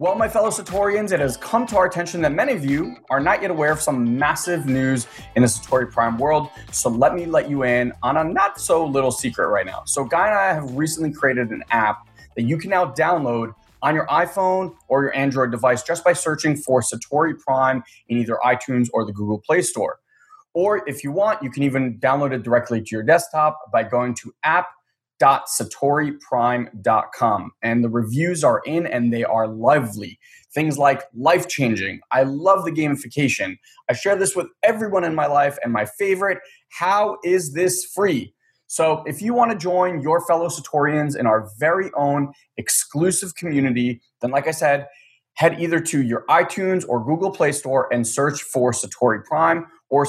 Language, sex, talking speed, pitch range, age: English, male, 190 wpm, 120-170 Hz, 20-39